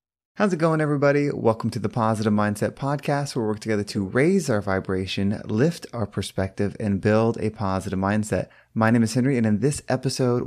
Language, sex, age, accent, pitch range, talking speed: English, male, 20-39, American, 105-135 Hz, 195 wpm